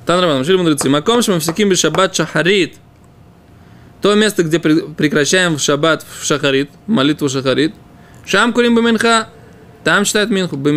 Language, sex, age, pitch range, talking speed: Russian, male, 20-39, 145-195 Hz, 140 wpm